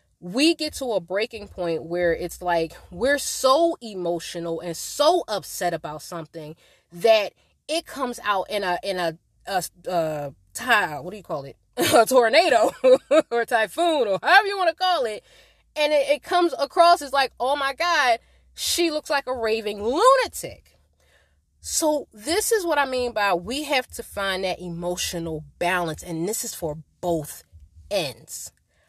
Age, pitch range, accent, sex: 20-39, 165-250 Hz, American, female